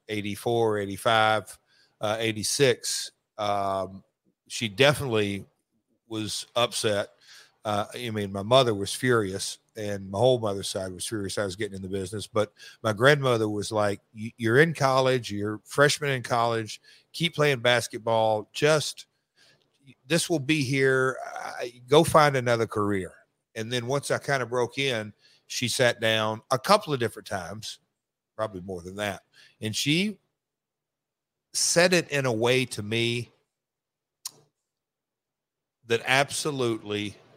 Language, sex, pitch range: English, male, 105-130 Hz